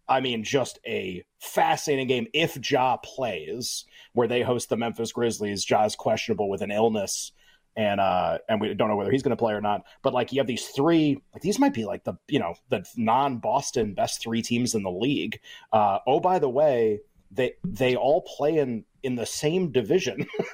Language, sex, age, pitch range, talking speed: English, male, 30-49, 120-165 Hz, 200 wpm